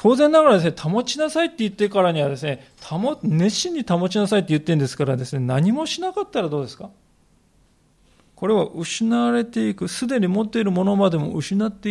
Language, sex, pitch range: Japanese, male, 135-190 Hz